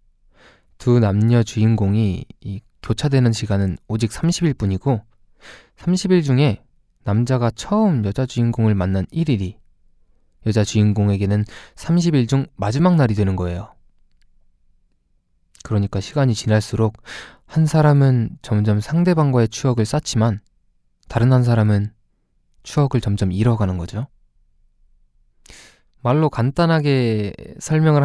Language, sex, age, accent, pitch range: Korean, male, 20-39, native, 100-130 Hz